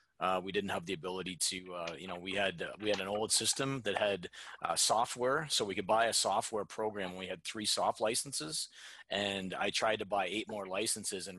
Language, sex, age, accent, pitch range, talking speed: English, male, 30-49, American, 95-110 Hz, 225 wpm